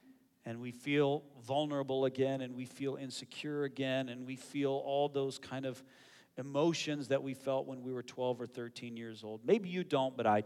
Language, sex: English, male